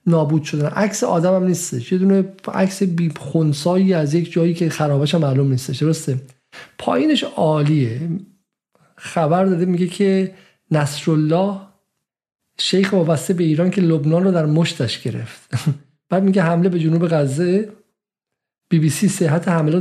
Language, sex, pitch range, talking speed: Persian, male, 155-190 Hz, 140 wpm